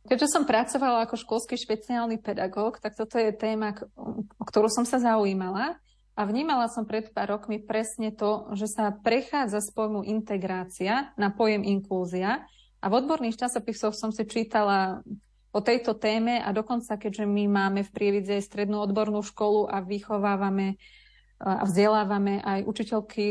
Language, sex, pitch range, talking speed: Slovak, female, 205-230 Hz, 150 wpm